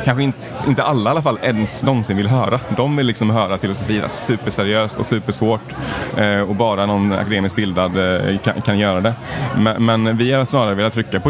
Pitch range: 95-115 Hz